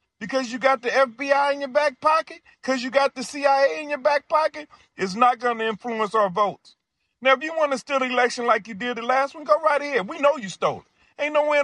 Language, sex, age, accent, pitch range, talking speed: English, male, 40-59, American, 175-275 Hz, 265 wpm